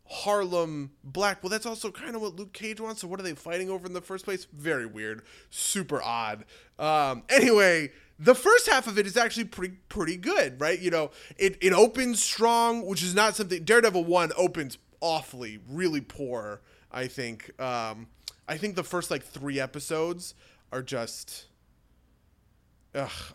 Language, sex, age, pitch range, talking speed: English, male, 20-39, 130-190 Hz, 170 wpm